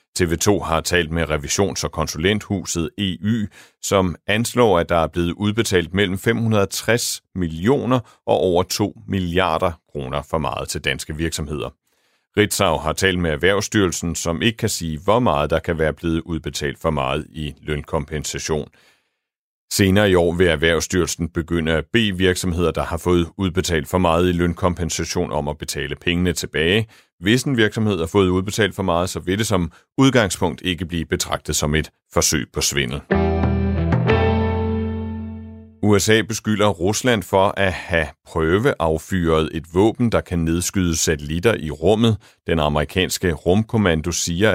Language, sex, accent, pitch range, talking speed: Danish, male, native, 80-105 Hz, 150 wpm